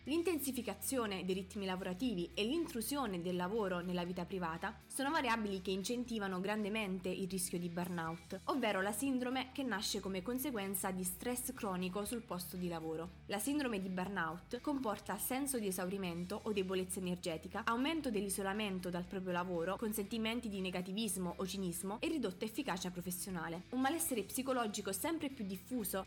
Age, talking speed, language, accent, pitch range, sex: 20-39, 150 wpm, Italian, native, 185-240 Hz, female